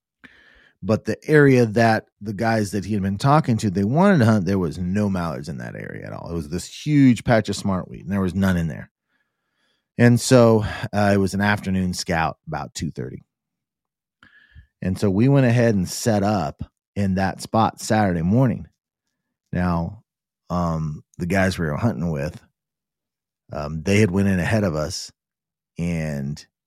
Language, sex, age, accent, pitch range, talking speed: English, male, 30-49, American, 95-120 Hz, 180 wpm